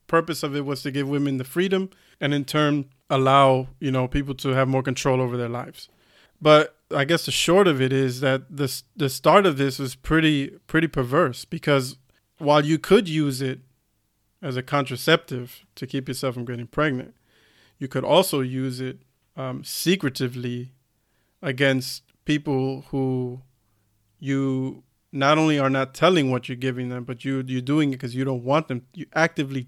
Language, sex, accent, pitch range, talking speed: English, male, American, 130-150 Hz, 175 wpm